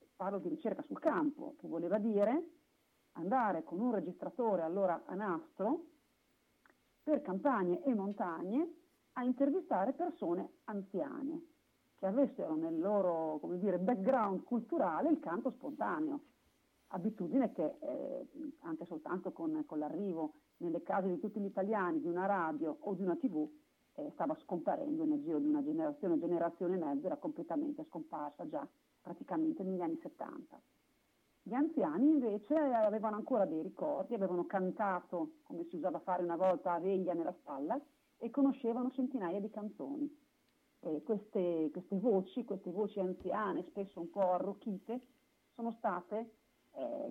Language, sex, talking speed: Italian, female, 140 wpm